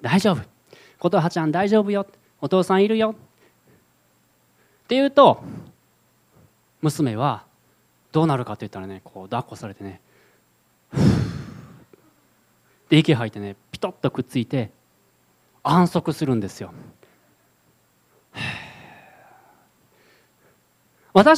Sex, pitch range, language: male, 140-225 Hz, Japanese